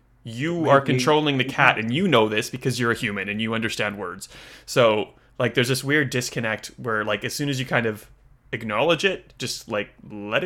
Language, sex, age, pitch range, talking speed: English, male, 20-39, 110-130 Hz, 205 wpm